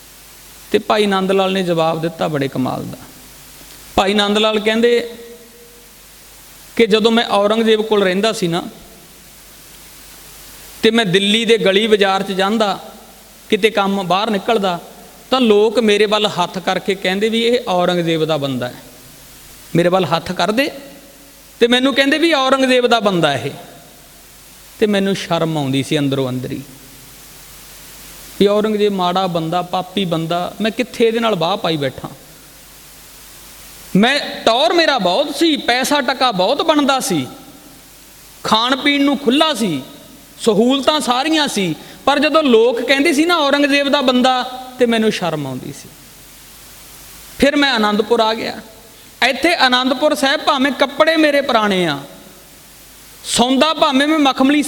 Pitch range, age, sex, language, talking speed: 180-265 Hz, 40-59, male, Punjabi, 140 wpm